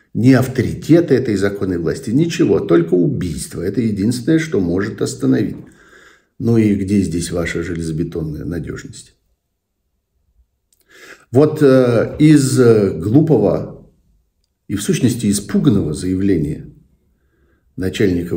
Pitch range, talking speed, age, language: 80-125 Hz, 100 wpm, 60-79, Russian